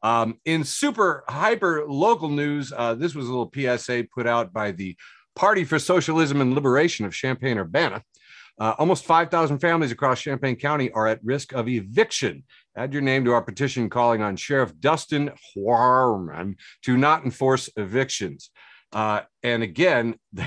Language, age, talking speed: English, 50-69, 155 wpm